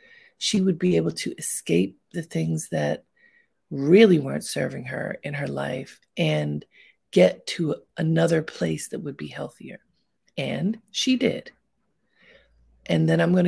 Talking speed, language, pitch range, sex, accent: 140 wpm, English, 165-230 Hz, female, American